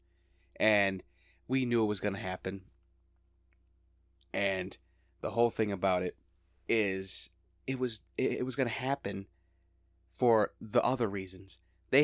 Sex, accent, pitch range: male, American, 85-115 Hz